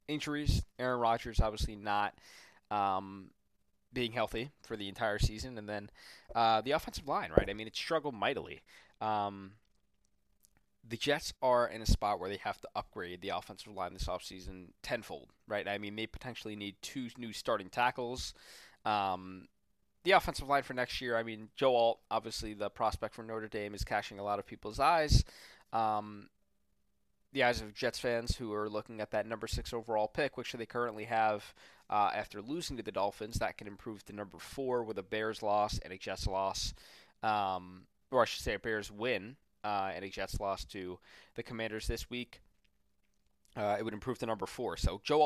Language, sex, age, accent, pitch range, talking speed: English, male, 20-39, American, 100-120 Hz, 190 wpm